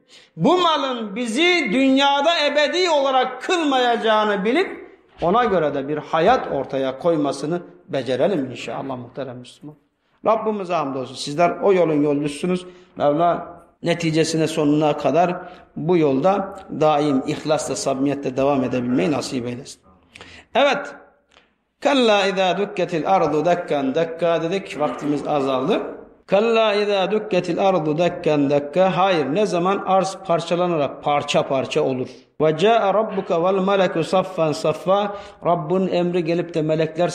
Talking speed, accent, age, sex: 110 wpm, native, 50-69, male